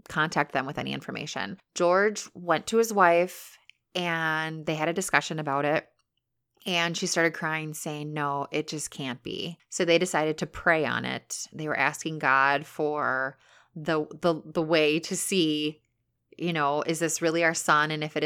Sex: female